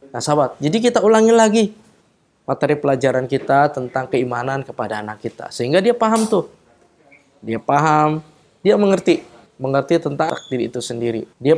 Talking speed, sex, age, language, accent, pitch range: 145 wpm, male, 20-39, Indonesian, native, 115-145 Hz